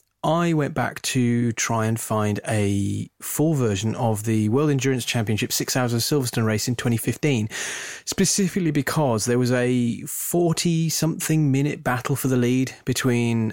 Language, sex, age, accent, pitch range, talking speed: English, male, 30-49, British, 110-135 Hz, 150 wpm